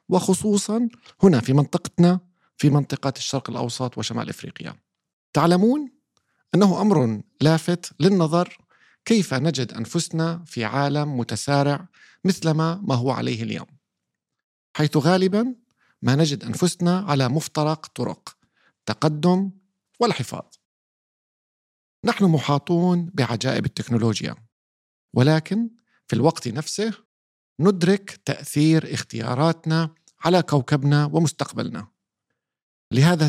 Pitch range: 130-175 Hz